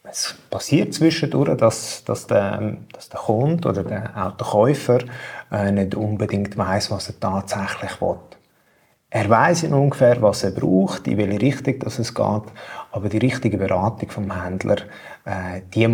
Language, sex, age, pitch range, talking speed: German, male, 30-49, 100-120 Hz, 150 wpm